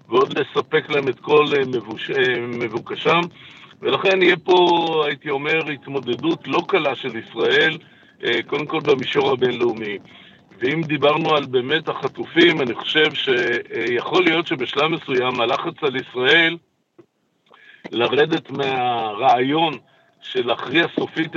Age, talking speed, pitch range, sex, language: 60-79, 110 wpm, 140-185 Hz, male, Hebrew